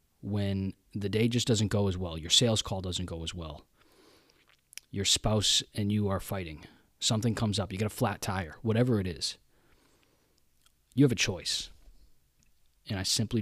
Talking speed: 175 wpm